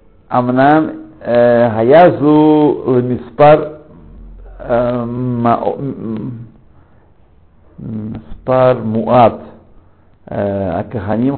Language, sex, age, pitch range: Russian, male, 60-79, 95-135 Hz